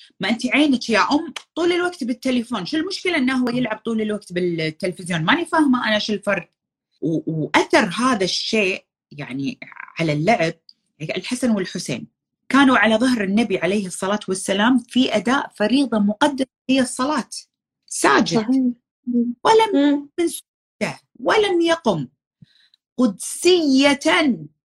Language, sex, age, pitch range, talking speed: Arabic, female, 30-49, 185-270 Hz, 120 wpm